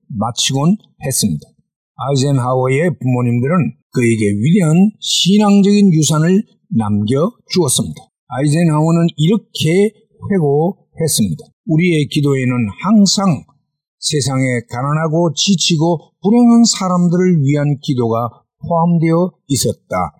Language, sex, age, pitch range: Korean, male, 50-69, 135-195 Hz